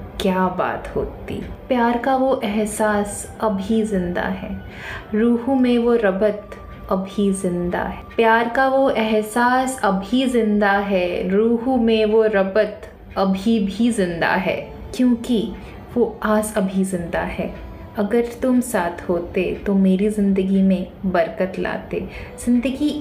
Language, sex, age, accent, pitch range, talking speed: Hindi, female, 20-39, native, 195-240 Hz, 130 wpm